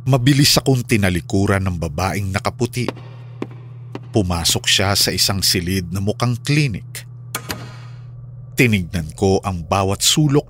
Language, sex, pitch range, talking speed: Filipino, male, 90-125 Hz, 120 wpm